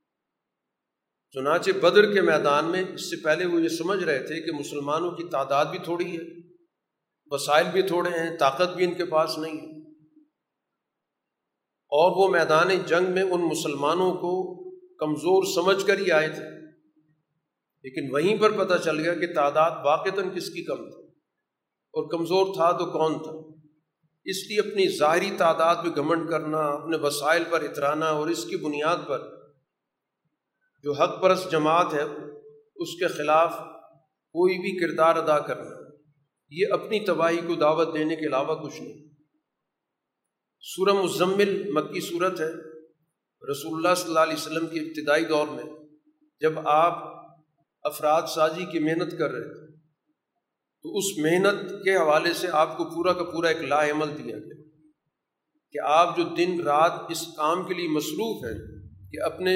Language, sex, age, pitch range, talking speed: Urdu, male, 50-69, 155-180 Hz, 160 wpm